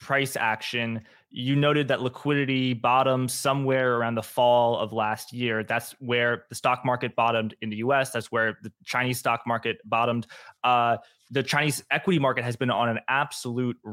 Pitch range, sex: 115-140 Hz, male